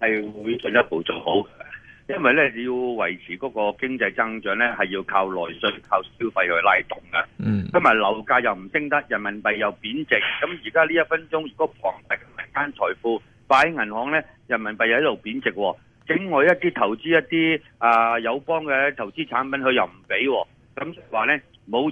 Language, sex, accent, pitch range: Chinese, male, native, 110-150 Hz